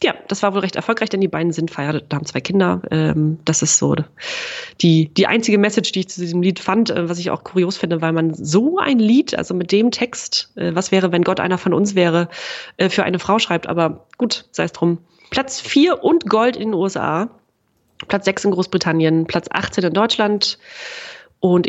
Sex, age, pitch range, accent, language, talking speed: female, 30-49, 170-225 Hz, German, German, 205 wpm